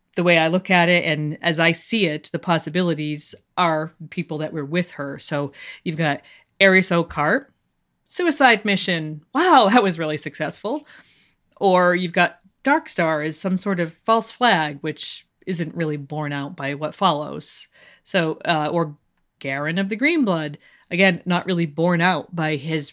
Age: 40-59